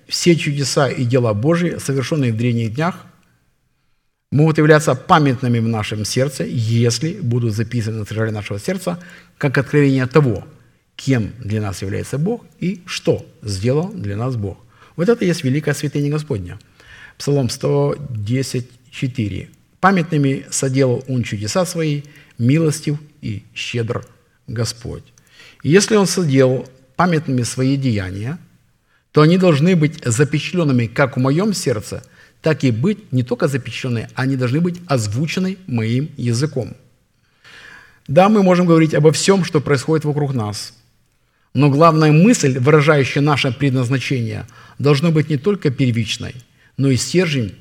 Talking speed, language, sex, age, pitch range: 130 wpm, Russian, male, 50-69, 120-155 Hz